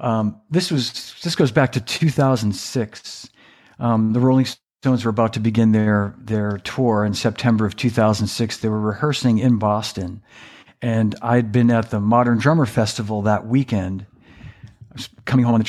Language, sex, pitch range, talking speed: English, male, 105-125 Hz, 170 wpm